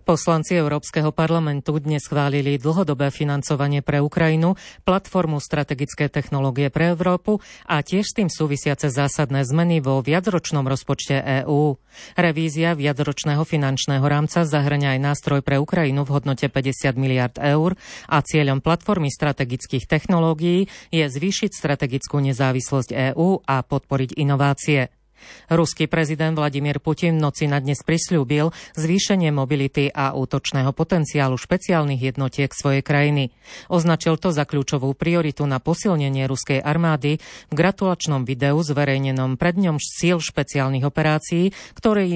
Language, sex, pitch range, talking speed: Slovak, female, 140-160 Hz, 125 wpm